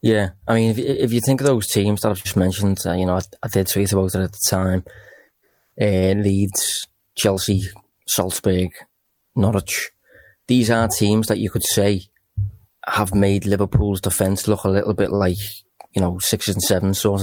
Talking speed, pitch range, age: 185 wpm, 95-110 Hz, 20-39